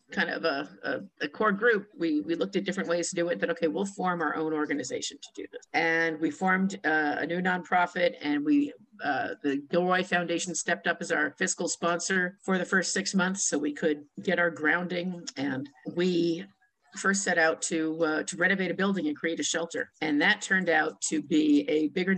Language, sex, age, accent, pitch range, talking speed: English, female, 50-69, American, 165-195 Hz, 215 wpm